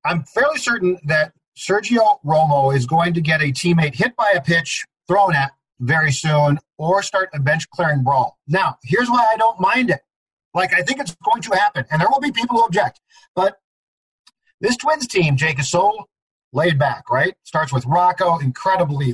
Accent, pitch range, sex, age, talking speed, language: American, 140-190 Hz, male, 40-59, 190 wpm, English